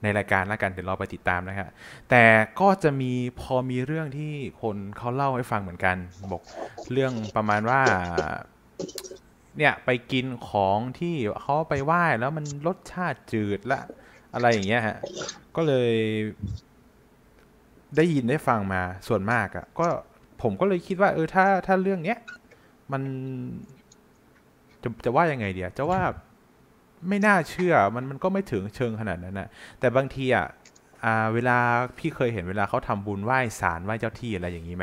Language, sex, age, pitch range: Thai, male, 20-39, 100-135 Hz